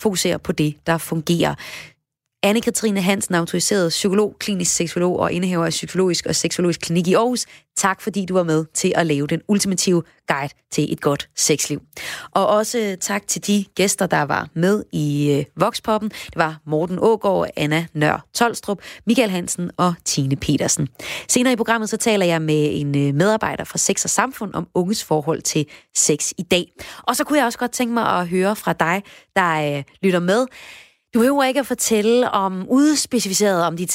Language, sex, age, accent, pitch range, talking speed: Danish, female, 30-49, native, 165-215 Hz, 185 wpm